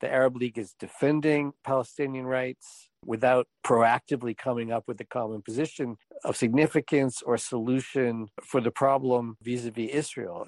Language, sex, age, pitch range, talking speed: English, male, 50-69, 105-130 Hz, 135 wpm